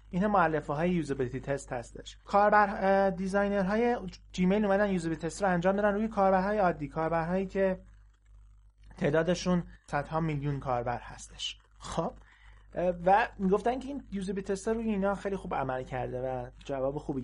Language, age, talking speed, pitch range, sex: Persian, 30-49, 145 wpm, 140-195 Hz, male